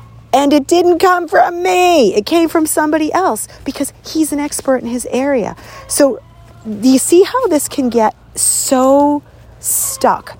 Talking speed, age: 160 wpm, 40-59